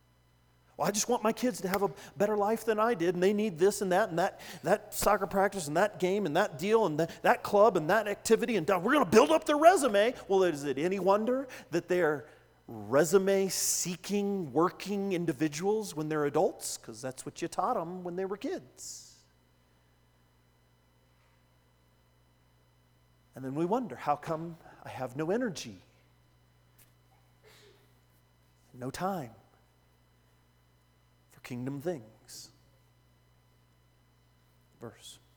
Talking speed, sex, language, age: 140 wpm, male, English, 40-59